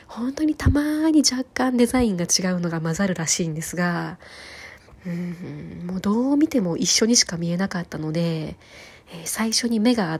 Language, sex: Japanese, female